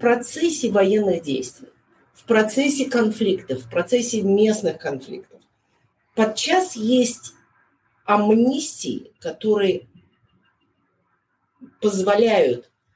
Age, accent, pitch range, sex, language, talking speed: 40-59, native, 180-235 Hz, female, Russian, 75 wpm